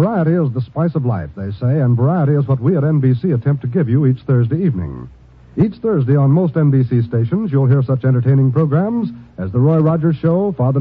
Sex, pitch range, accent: male, 125-170 Hz, American